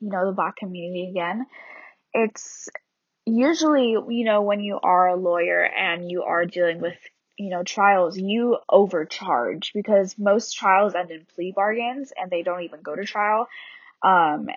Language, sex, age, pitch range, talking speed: English, female, 10-29, 175-215 Hz, 165 wpm